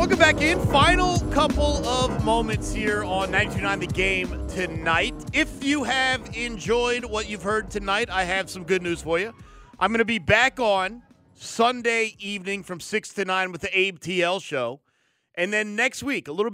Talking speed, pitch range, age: 180 wpm, 165-220 Hz, 30-49